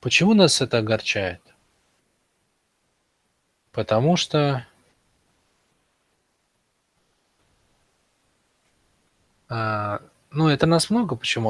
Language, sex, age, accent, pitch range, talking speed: Russian, male, 20-39, native, 110-145 Hz, 55 wpm